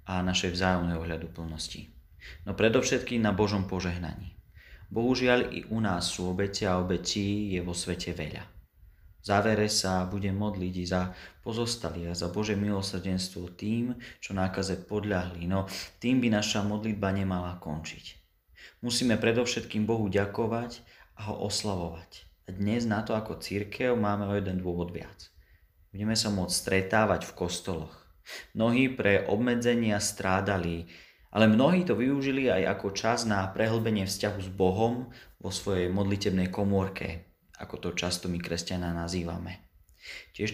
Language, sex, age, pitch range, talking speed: Slovak, male, 30-49, 90-110 Hz, 140 wpm